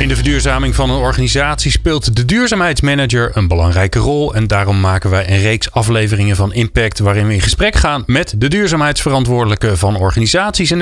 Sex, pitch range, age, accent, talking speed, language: male, 100-140 Hz, 30-49, Dutch, 175 wpm, Dutch